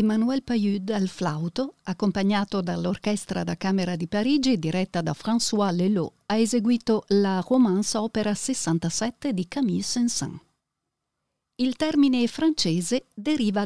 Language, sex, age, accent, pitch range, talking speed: Italian, female, 50-69, native, 175-235 Hz, 120 wpm